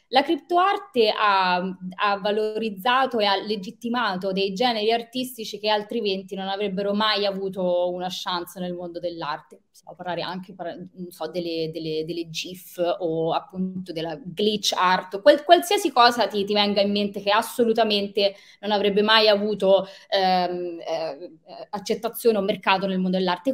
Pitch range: 190-230 Hz